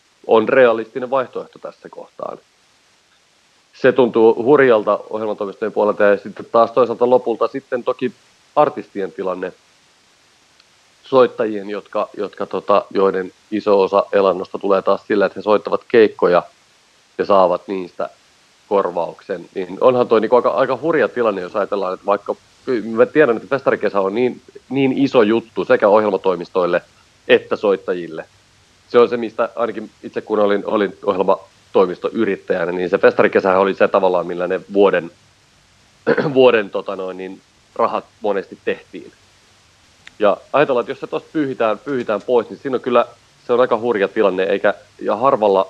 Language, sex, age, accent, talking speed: Finnish, male, 30-49, native, 140 wpm